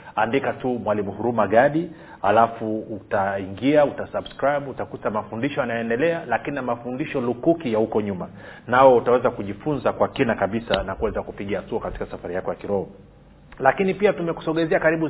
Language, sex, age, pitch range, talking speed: Swahili, male, 40-59, 110-140 Hz, 145 wpm